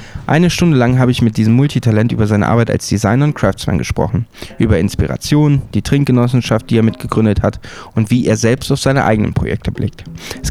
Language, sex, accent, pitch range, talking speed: German, male, German, 110-135 Hz, 195 wpm